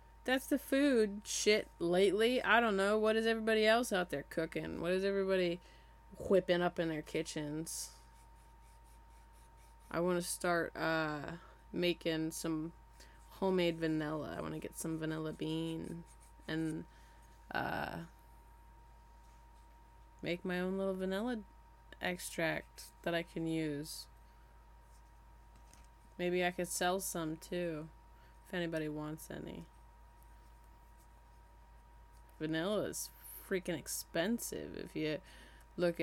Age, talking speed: 20-39, 115 wpm